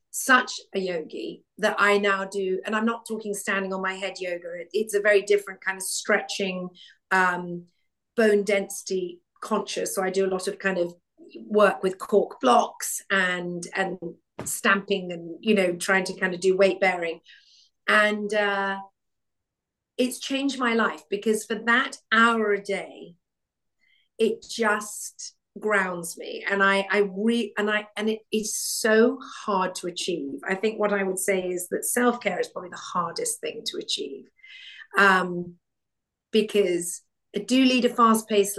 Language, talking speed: English, 160 wpm